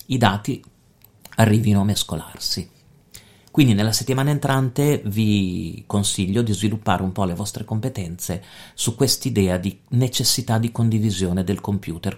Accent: native